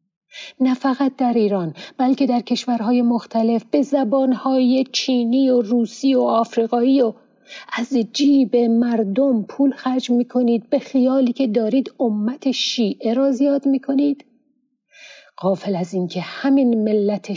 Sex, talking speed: female, 125 wpm